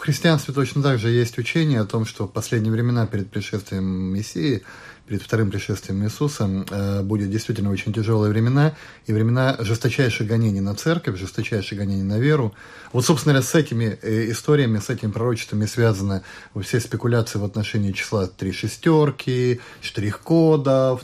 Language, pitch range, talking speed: Russian, 105-140 Hz, 150 wpm